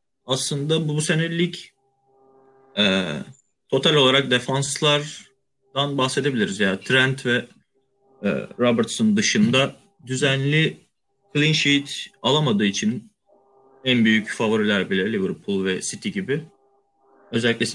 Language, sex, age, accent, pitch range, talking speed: Turkish, male, 30-49, native, 115-180 Hz, 100 wpm